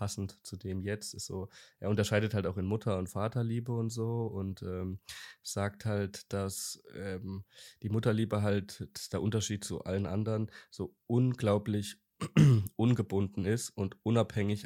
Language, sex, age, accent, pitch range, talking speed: German, male, 20-39, German, 95-115 Hz, 140 wpm